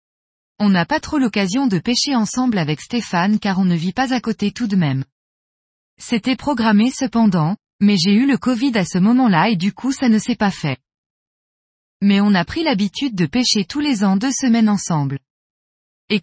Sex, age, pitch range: female, 20-39, 185-250 Hz